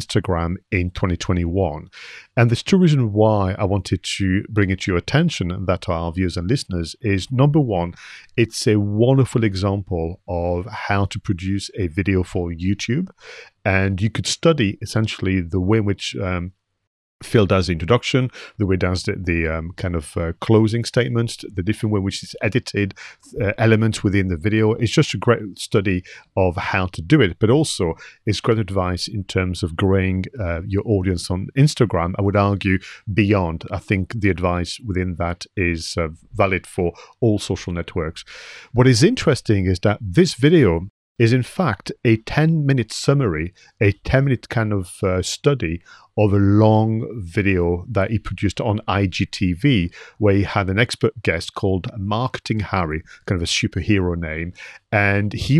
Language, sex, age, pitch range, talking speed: English, male, 40-59, 90-115 Hz, 170 wpm